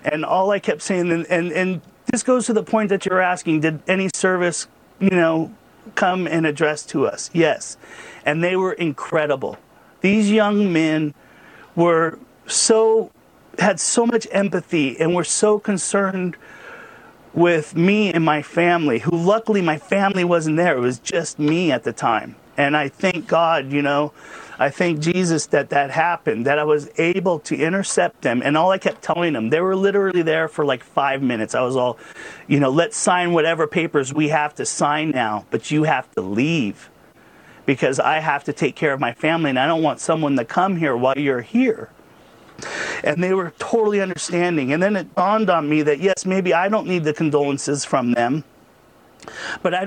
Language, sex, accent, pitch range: English, male, American, 150-190 Hz